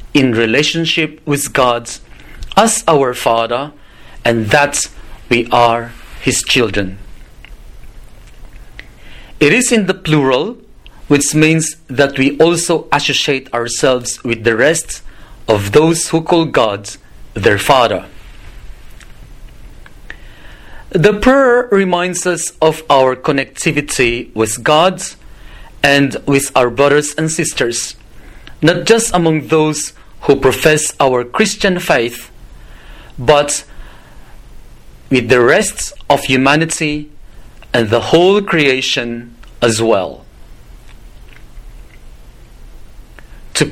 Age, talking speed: 40-59, 100 wpm